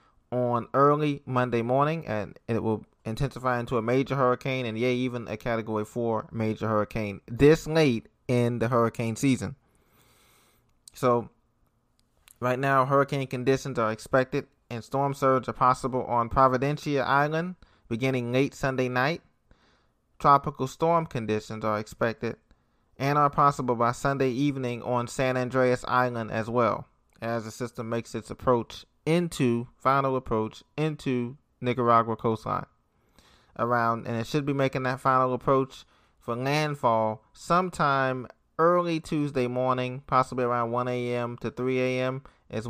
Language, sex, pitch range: English, male, 115-140 Hz